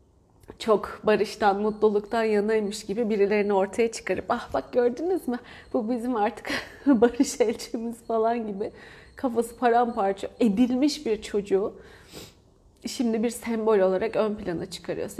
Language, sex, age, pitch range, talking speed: Turkish, female, 30-49, 195-245 Hz, 120 wpm